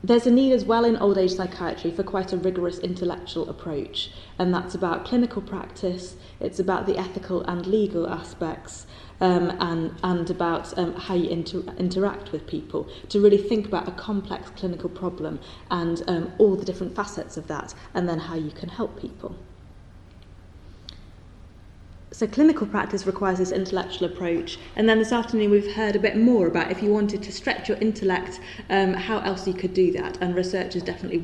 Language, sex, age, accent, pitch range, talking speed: English, female, 20-39, British, 170-195 Hz, 185 wpm